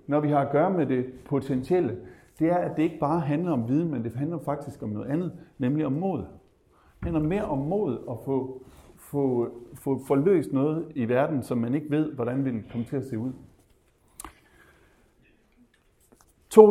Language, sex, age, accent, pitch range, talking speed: Danish, male, 60-79, native, 115-150 Hz, 190 wpm